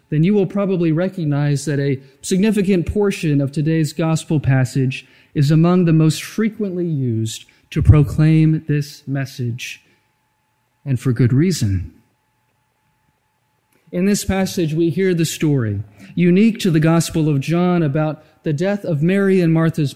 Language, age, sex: English, 40-59, male